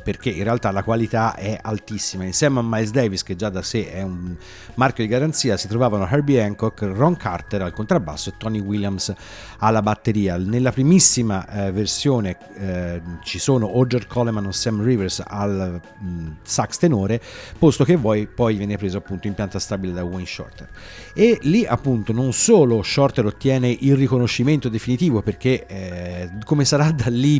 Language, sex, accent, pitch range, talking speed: Italian, male, native, 100-130 Hz, 175 wpm